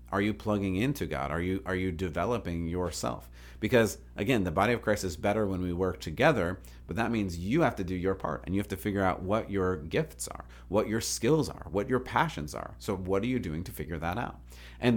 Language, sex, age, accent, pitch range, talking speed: English, male, 30-49, American, 80-105 Hz, 240 wpm